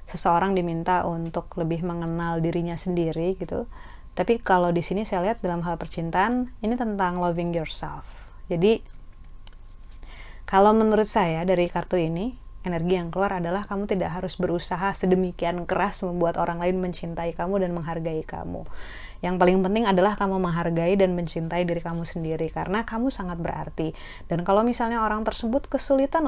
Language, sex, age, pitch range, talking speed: Indonesian, female, 20-39, 165-195 Hz, 155 wpm